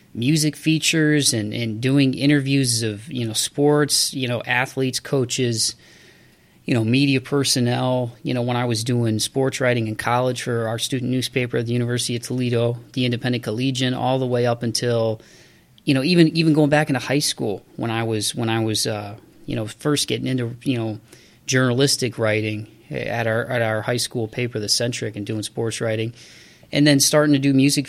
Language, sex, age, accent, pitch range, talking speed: English, male, 30-49, American, 115-135 Hz, 190 wpm